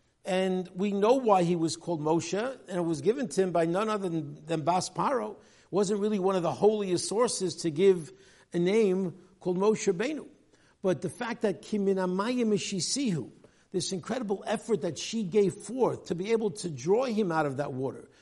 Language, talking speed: English, 190 wpm